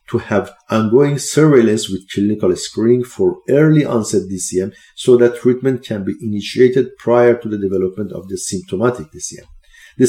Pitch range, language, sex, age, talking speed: 100-150 Hz, English, male, 50-69, 155 wpm